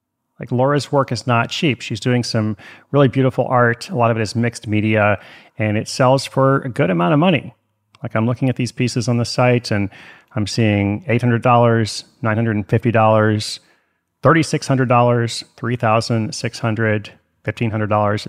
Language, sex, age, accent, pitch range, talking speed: English, male, 30-49, American, 110-130 Hz, 150 wpm